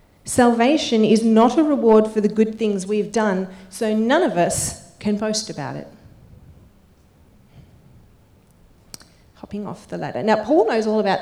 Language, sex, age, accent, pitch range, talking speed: English, female, 30-49, Australian, 175-220 Hz, 150 wpm